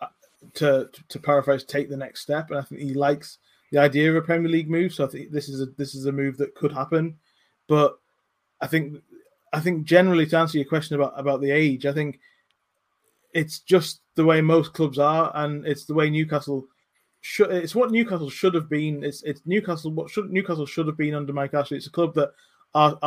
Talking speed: 220 wpm